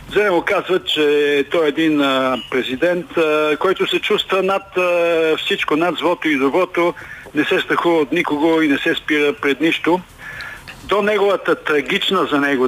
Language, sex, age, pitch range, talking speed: Bulgarian, male, 50-69, 150-200 Hz, 165 wpm